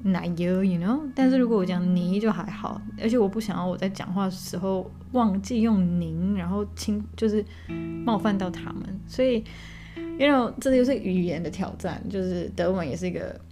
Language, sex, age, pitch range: Chinese, female, 20-39, 180-215 Hz